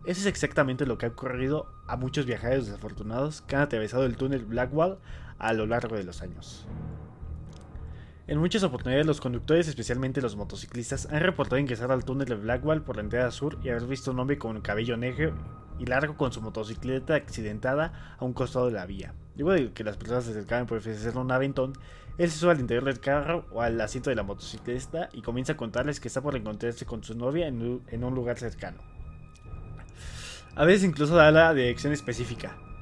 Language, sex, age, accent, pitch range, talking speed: Spanish, male, 20-39, Mexican, 115-145 Hz, 200 wpm